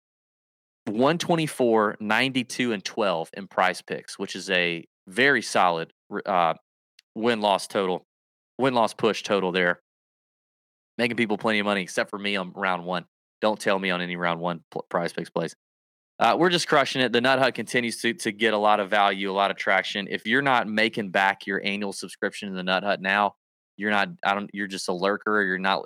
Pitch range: 95-135 Hz